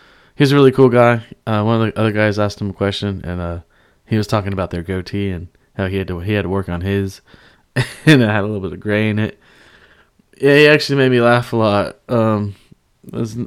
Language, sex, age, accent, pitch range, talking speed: English, male, 20-39, American, 105-130 Hz, 240 wpm